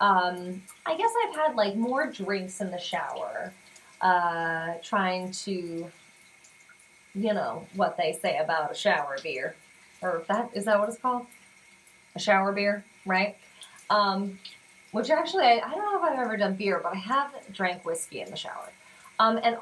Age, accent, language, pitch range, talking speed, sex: 30-49, American, English, 195-240 Hz, 170 wpm, female